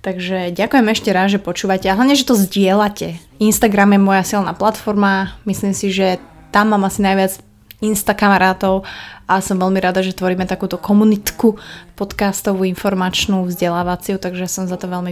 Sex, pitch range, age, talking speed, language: female, 190-215 Hz, 20-39, 165 wpm, Slovak